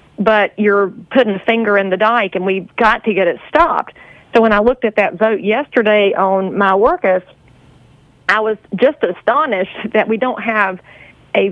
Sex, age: female, 40-59